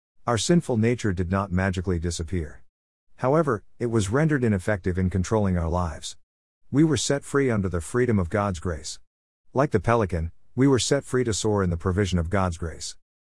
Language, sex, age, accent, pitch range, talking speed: English, male, 50-69, American, 85-120 Hz, 185 wpm